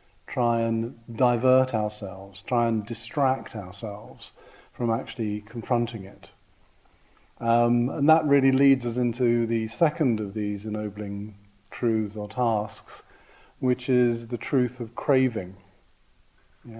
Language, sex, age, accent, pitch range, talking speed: English, male, 40-59, British, 110-125 Hz, 120 wpm